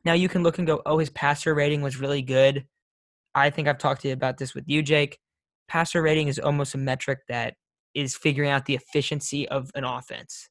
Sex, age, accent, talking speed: male, 10-29, American, 225 wpm